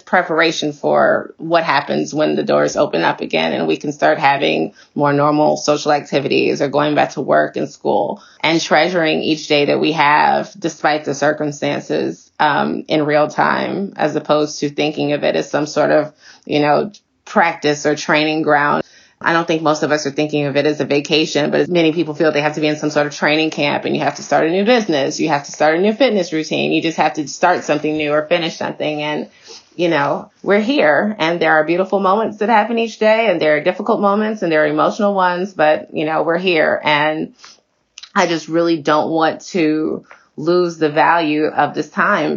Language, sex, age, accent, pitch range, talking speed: English, female, 20-39, American, 150-175 Hz, 215 wpm